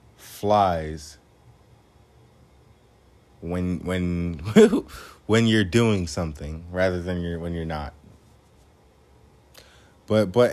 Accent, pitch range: American, 90-115 Hz